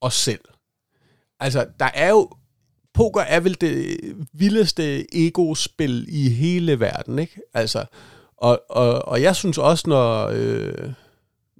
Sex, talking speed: male, 130 wpm